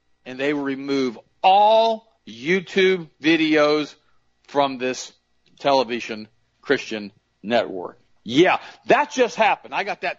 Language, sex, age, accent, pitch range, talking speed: English, male, 50-69, American, 120-150 Hz, 110 wpm